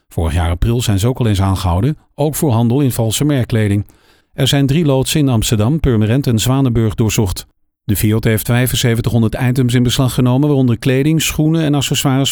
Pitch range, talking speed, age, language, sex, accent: 110-135 Hz, 185 wpm, 50-69, Dutch, male, Dutch